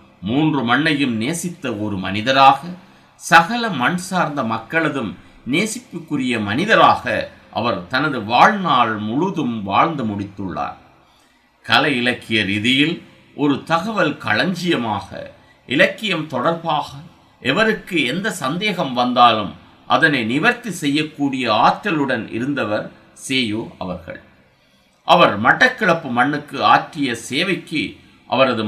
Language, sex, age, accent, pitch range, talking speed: Tamil, male, 50-69, native, 100-155 Hz, 90 wpm